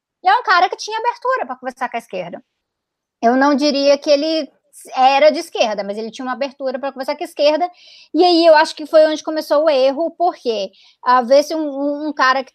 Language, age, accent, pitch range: Portuguese, 20-39, Brazilian, 235-295 Hz